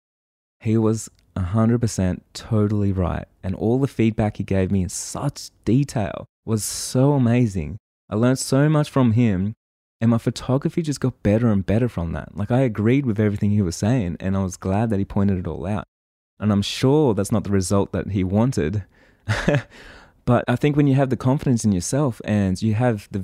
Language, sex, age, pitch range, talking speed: English, male, 20-39, 95-120 Hz, 195 wpm